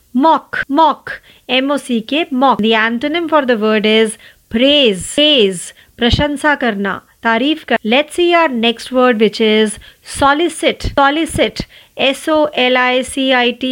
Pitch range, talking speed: 230-300 Hz, 115 wpm